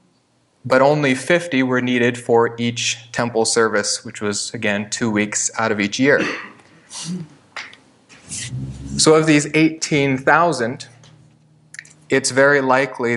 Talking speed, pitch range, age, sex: 115 wpm, 115-135 Hz, 20-39, male